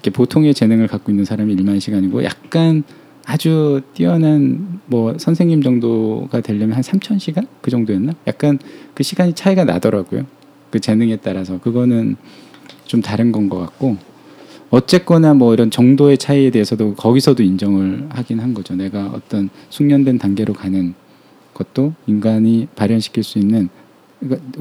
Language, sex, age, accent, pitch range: Korean, male, 20-39, native, 105-145 Hz